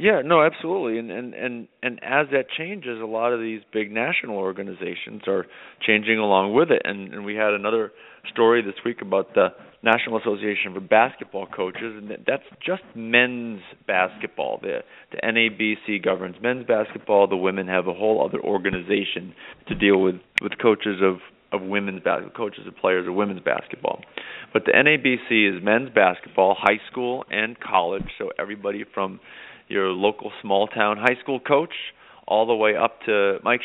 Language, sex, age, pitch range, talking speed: English, male, 30-49, 100-120 Hz, 170 wpm